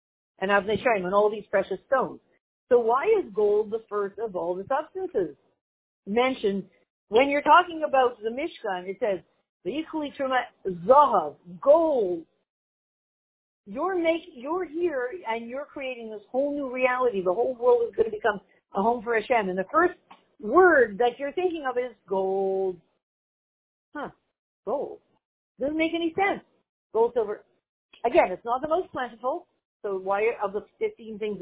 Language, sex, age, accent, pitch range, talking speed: English, female, 50-69, American, 195-290 Hz, 145 wpm